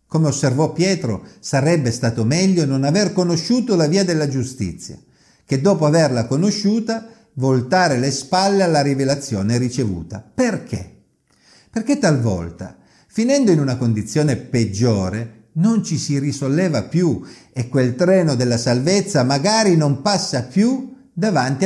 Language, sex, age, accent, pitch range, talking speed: Italian, male, 50-69, native, 110-180 Hz, 125 wpm